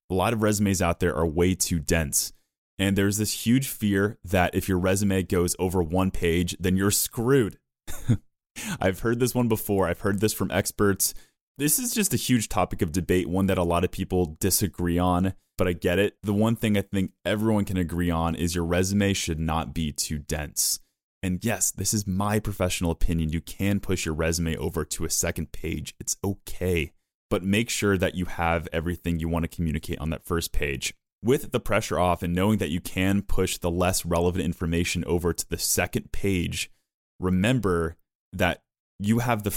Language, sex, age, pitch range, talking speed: English, male, 20-39, 85-100 Hz, 200 wpm